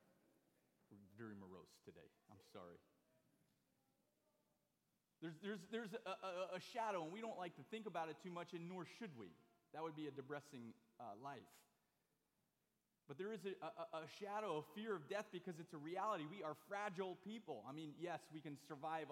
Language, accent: English, American